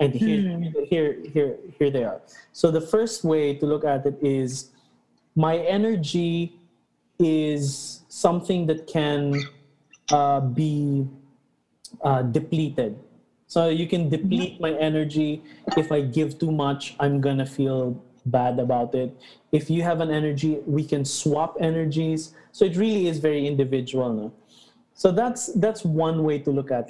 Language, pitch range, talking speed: English, 135-175 Hz, 150 wpm